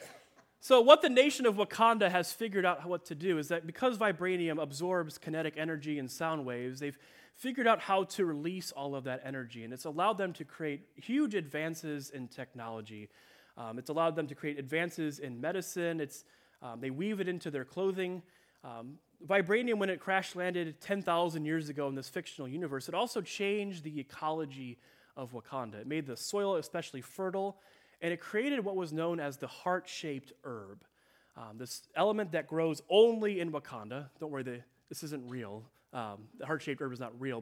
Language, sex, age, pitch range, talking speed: English, male, 30-49, 135-185 Hz, 185 wpm